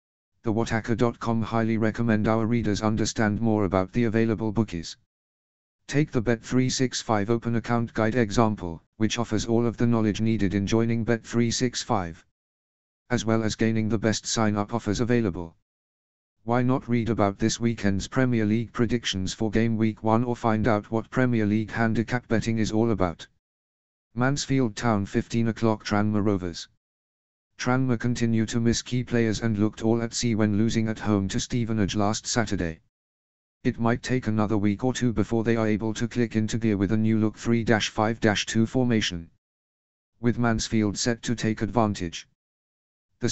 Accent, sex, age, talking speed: British, male, 50-69, 160 wpm